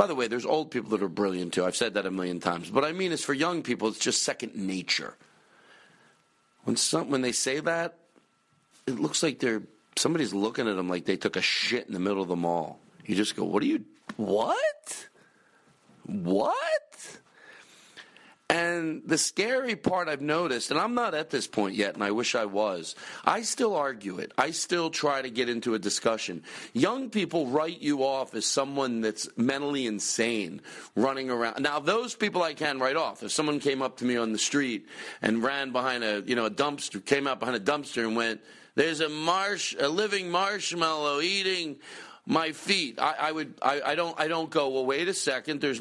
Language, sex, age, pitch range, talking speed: English, male, 40-59, 120-170 Hz, 205 wpm